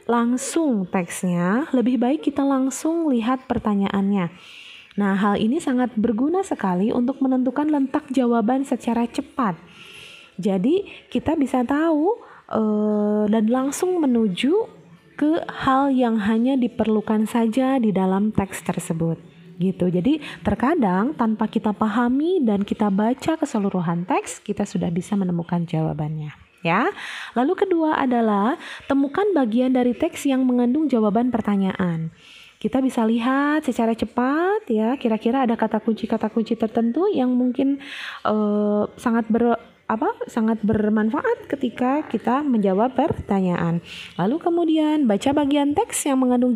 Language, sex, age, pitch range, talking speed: Indonesian, female, 20-39, 210-275 Hz, 125 wpm